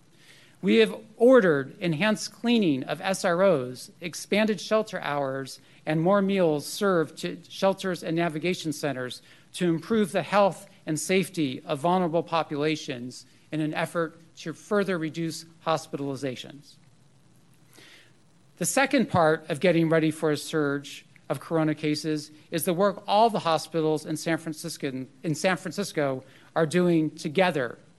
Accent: American